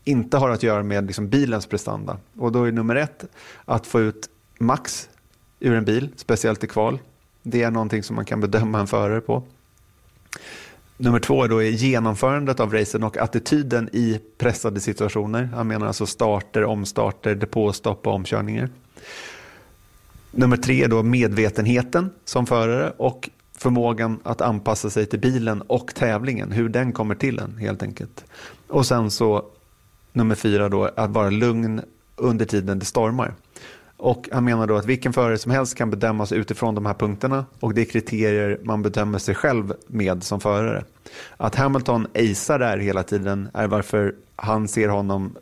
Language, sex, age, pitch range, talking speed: Swedish, male, 30-49, 105-120 Hz, 165 wpm